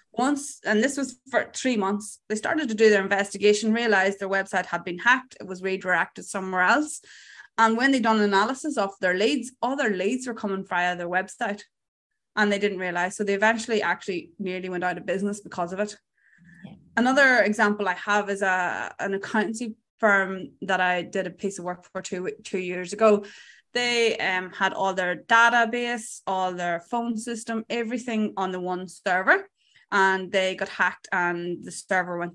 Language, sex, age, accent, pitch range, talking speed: English, female, 20-39, Irish, 185-230 Hz, 185 wpm